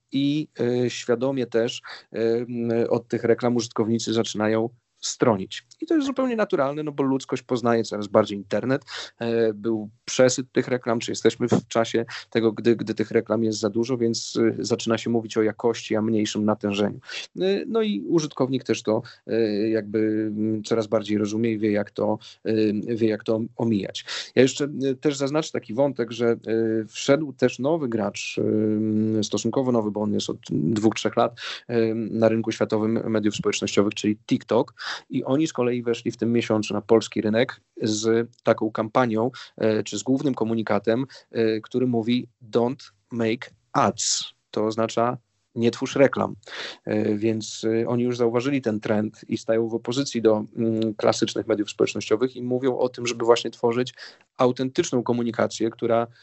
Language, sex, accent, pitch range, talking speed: Polish, male, native, 110-125 Hz, 150 wpm